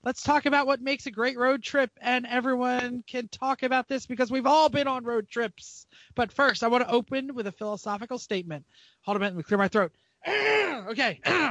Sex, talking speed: male, 220 wpm